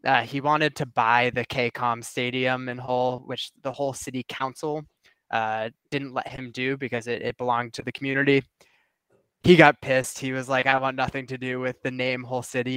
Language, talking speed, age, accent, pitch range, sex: English, 200 wpm, 20-39, American, 120-130 Hz, male